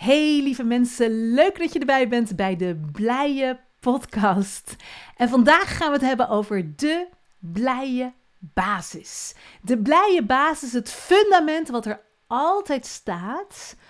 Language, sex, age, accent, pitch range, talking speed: Dutch, female, 40-59, Dutch, 200-275 Hz, 135 wpm